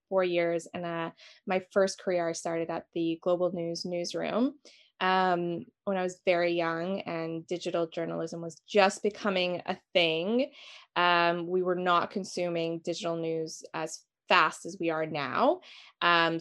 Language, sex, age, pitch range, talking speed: English, female, 20-39, 170-205 Hz, 155 wpm